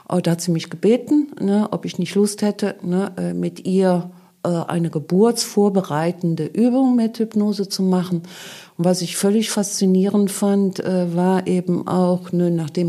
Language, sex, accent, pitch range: German, female, German, 170-190 Hz